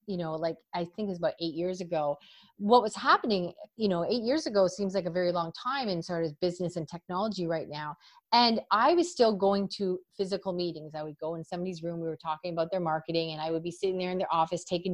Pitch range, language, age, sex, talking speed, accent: 170-220 Hz, English, 30-49, female, 255 wpm, American